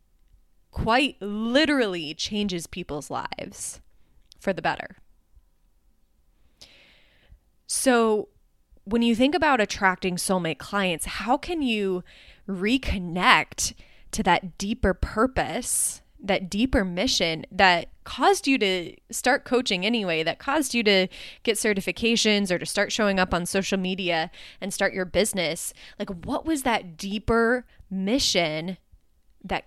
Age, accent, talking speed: 20-39, American, 120 wpm